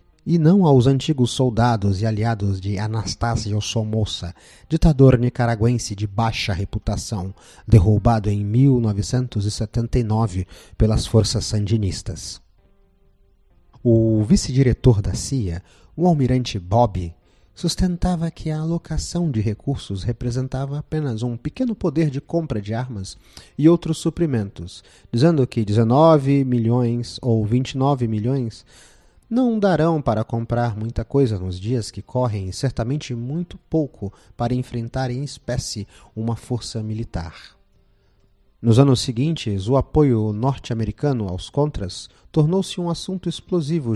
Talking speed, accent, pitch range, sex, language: 115 wpm, Brazilian, 105-140 Hz, male, Portuguese